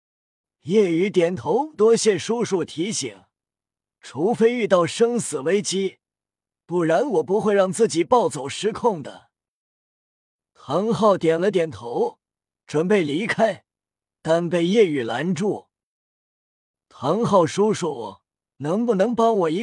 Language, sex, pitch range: Chinese, male, 160-220 Hz